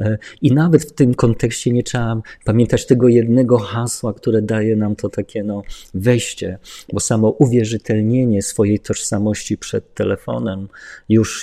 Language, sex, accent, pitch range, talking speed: Polish, male, native, 100-125 Hz, 135 wpm